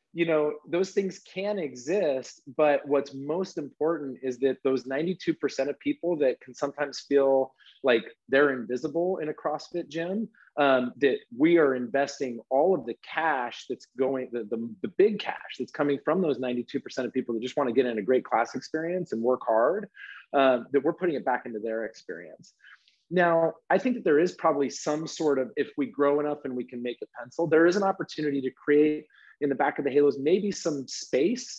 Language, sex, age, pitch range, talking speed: English, male, 30-49, 130-165 Hz, 205 wpm